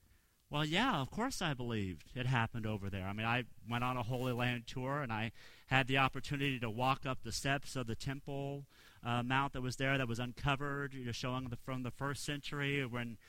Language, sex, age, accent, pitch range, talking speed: English, male, 40-59, American, 120-155 Hz, 215 wpm